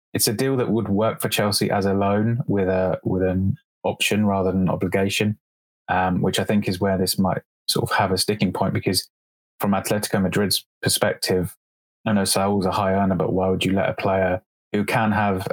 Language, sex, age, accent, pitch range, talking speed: English, male, 20-39, British, 95-100 Hz, 215 wpm